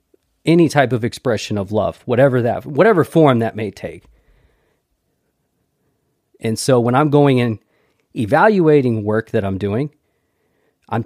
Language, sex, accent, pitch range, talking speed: English, male, American, 110-135 Hz, 135 wpm